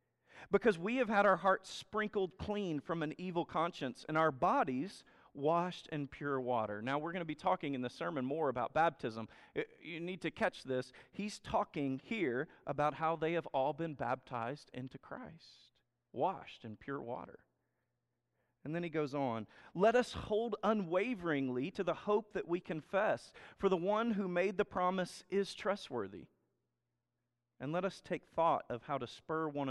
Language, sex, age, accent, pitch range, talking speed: English, male, 40-59, American, 135-190 Hz, 175 wpm